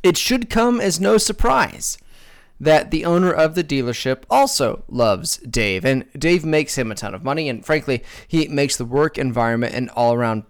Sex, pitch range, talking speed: male, 120-160 Hz, 185 wpm